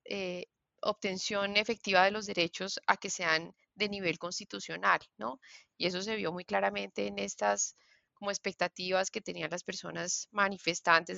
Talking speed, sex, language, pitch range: 150 wpm, female, Spanish, 165-205 Hz